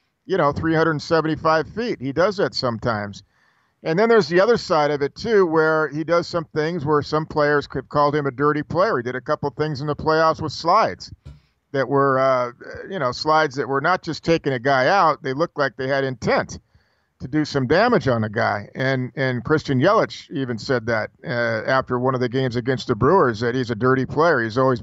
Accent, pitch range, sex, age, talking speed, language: American, 125-155 Hz, male, 50-69, 220 wpm, English